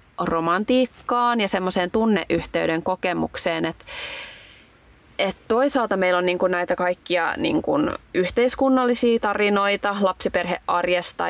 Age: 20-39